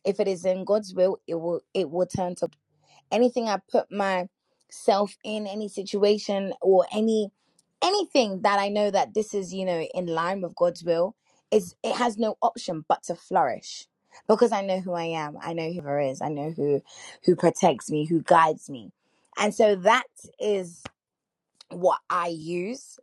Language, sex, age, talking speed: English, female, 20-39, 180 wpm